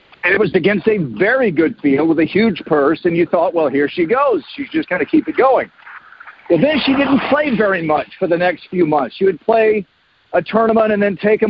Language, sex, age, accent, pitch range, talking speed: English, male, 50-69, American, 165-230 Hz, 240 wpm